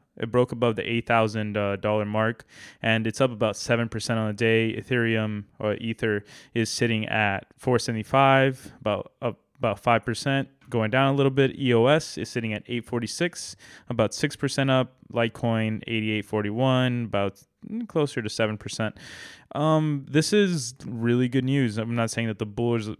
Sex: male